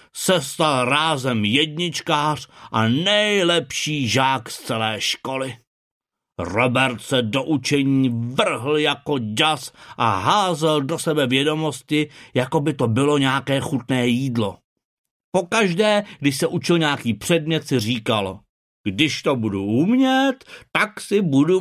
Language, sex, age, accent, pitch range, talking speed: Czech, male, 50-69, native, 125-165 Hz, 125 wpm